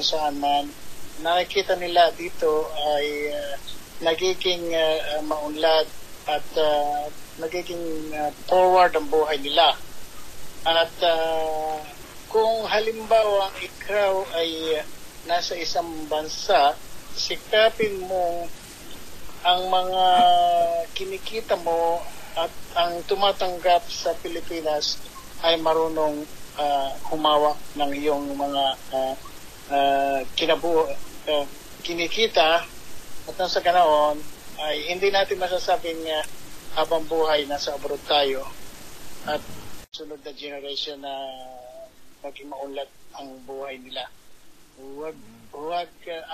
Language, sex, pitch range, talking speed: Filipino, male, 145-175 Hz, 105 wpm